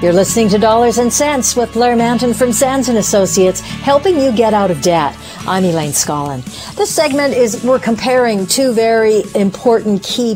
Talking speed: 180 wpm